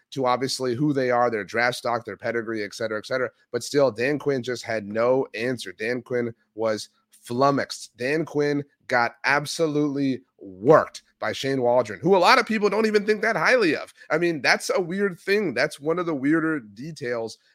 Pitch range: 115-145 Hz